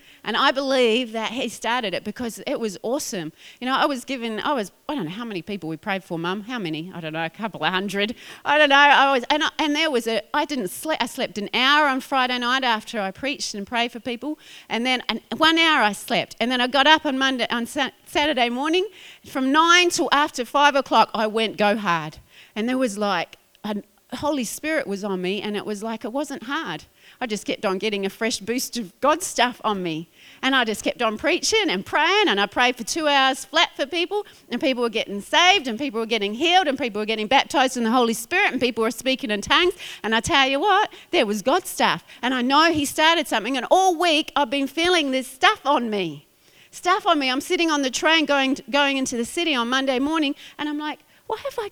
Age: 30-49